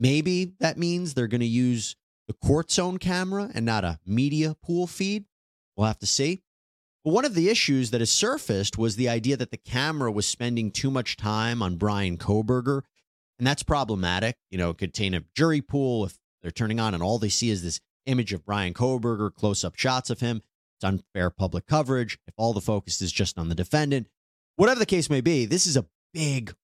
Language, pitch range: English, 105-140 Hz